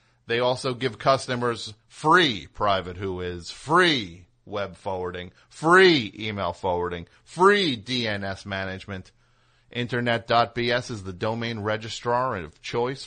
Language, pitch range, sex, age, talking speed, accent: English, 110-140 Hz, male, 40-59, 110 wpm, American